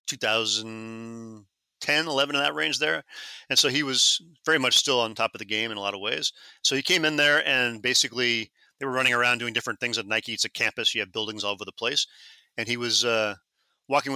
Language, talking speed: English, 225 wpm